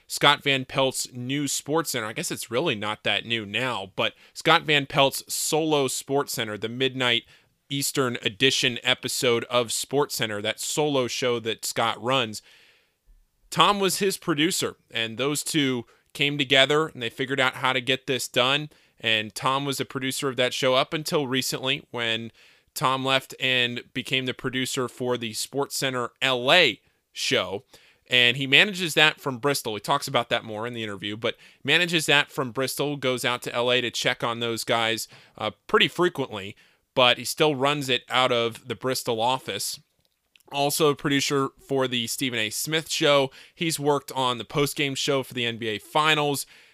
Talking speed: 175 wpm